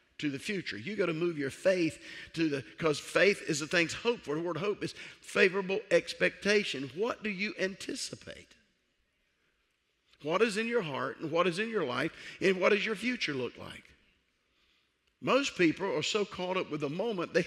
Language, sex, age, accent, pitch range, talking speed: English, male, 50-69, American, 155-200 Hz, 190 wpm